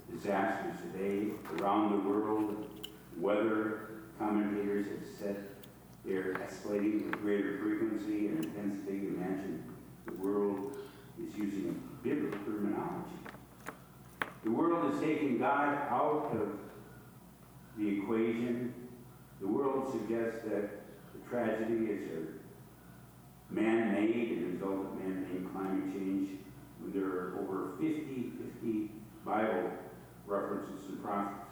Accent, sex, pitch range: American, male, 100-115 Hz